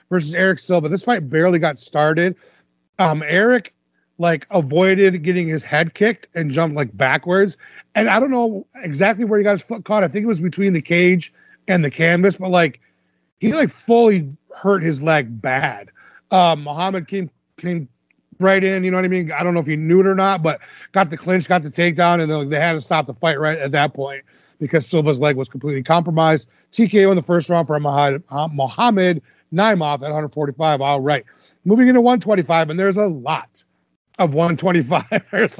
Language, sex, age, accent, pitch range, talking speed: English, male, 30-49, American, 155-195 Hz, 195 wpm